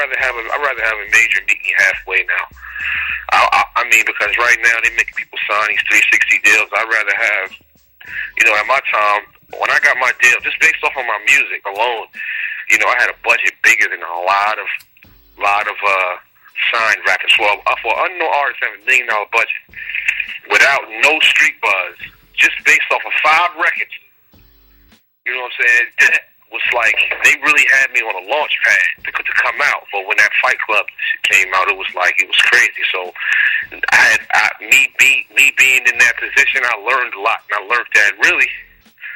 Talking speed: 200 wpm